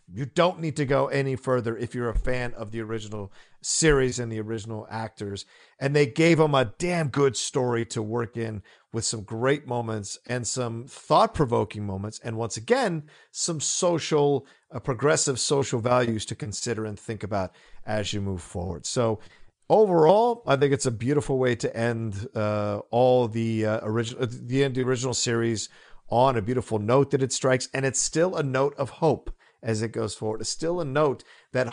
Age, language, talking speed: 50-69, English, 185 wpm